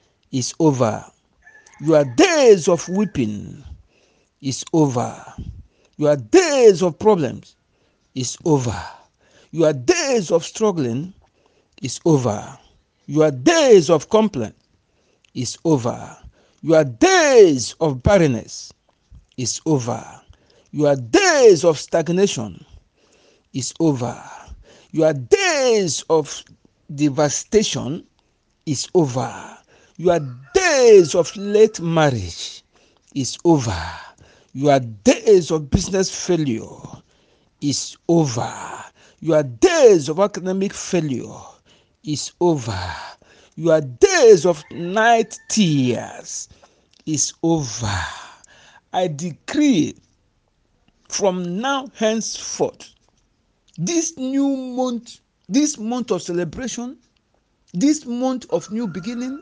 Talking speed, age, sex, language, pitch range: 90 wpm, 60-79, male, English, 140-230 Hz